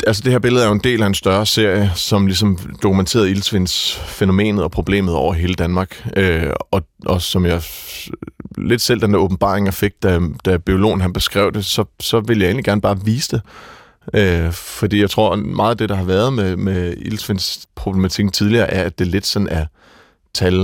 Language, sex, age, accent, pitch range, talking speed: Danish, male, 30-49, native, 90-105 Hz, 200 wpm